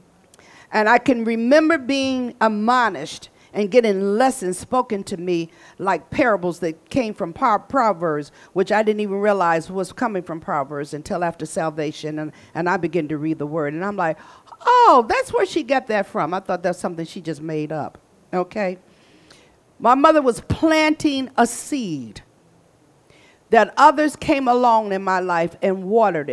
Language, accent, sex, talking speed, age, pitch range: English, American, female, 165 wpm, 50-69, 170-235 Hz